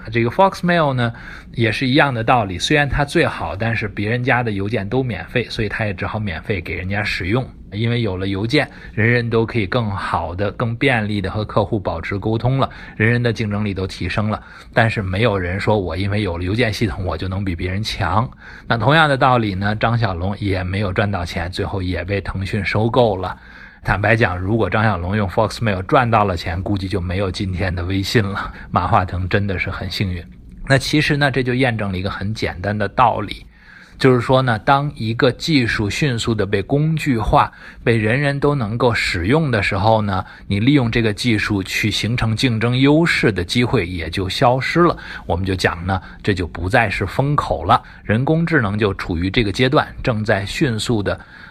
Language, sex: English, male